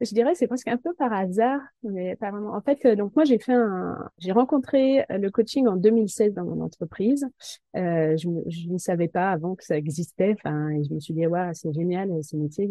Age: 30-49